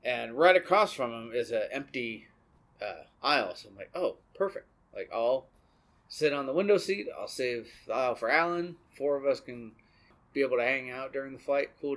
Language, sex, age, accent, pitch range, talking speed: English, male, 30-49, American, 125-165 Hz, 205 wpm